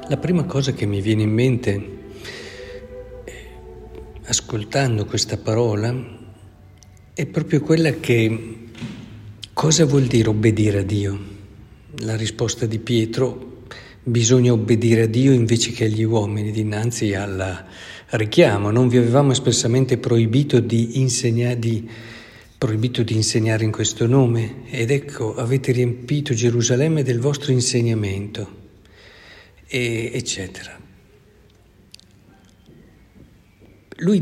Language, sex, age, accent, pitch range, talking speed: Italian, male, 50-69, native, 105-125 Hz, 105 wpm